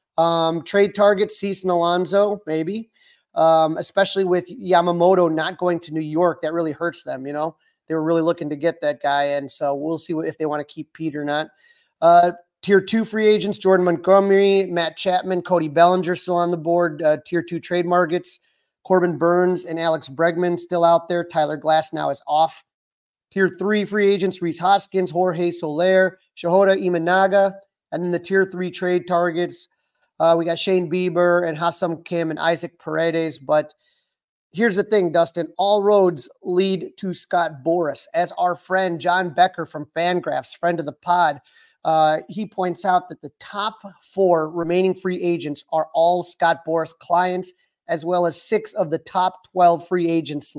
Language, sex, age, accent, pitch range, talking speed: English, male, 30-49, American, 165-190 Hz, 180 wpm